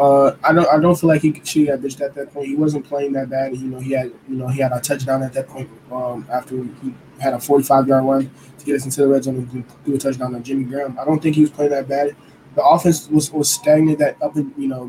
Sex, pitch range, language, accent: male, 135-145 Hz, English, American